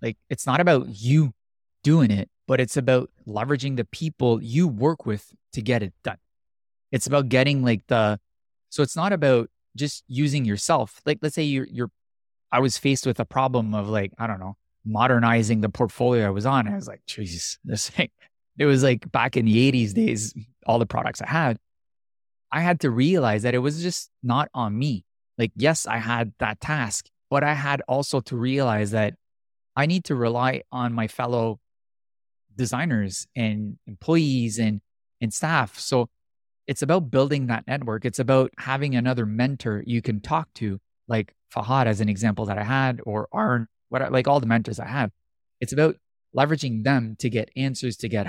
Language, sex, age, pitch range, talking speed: English, male, 20-39, 110-135 Hz, 190 wpm